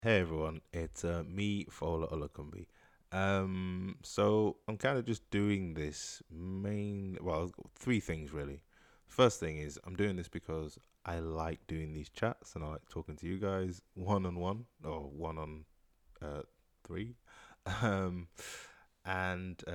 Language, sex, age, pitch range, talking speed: English, male, 20-39, 75-95 Hz, 150 wpm